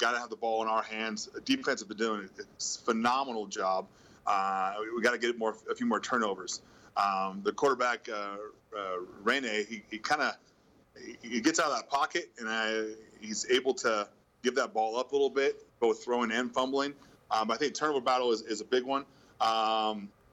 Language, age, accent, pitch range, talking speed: English, 30-49, American, 110-150 Hz, 200 wpm